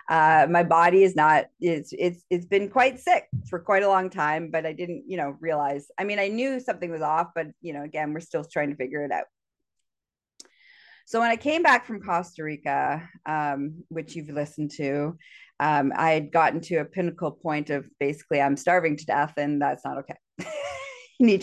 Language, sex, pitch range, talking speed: English, female, 155-205 Hz, 205 wpm